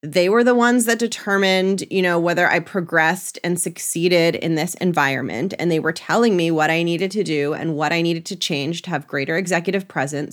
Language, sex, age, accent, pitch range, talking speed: English, female, 20-39, American, 165-215 Hz, 215 wpm